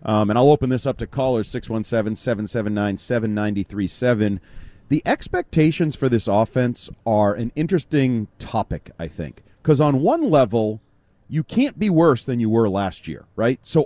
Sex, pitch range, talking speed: male, 100-145 Hz, 150 wpm